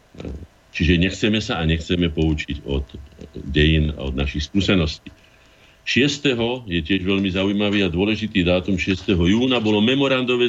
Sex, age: male, 50-69